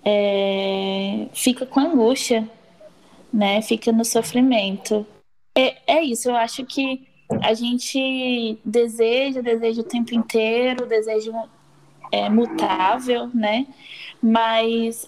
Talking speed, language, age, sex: 105 wpm, Portuguese, 10-29, female